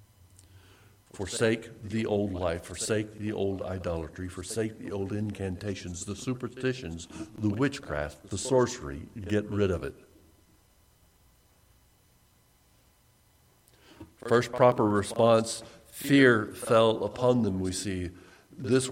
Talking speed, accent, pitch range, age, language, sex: 100 wpm, American, 95-115 Hz, 60-79, English, male